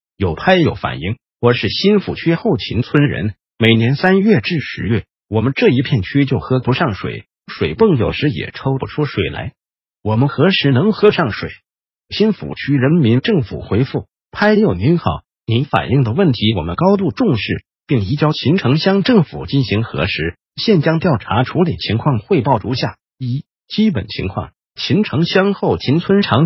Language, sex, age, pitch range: Chinese, male, 50-69, 120-180 Hz